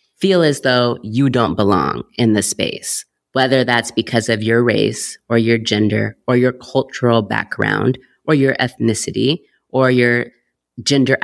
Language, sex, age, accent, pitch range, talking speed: English, female, 30-49, American, 115-160 Hz, 150 wpm